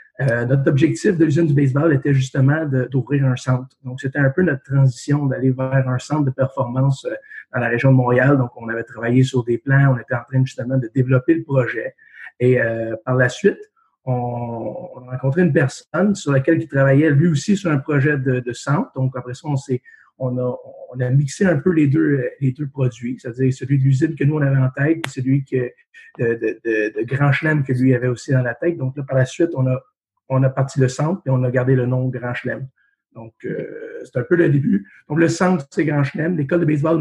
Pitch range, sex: 130-160 Hz, male